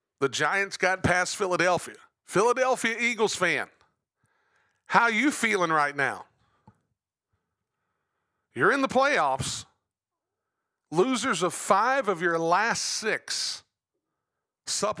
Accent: American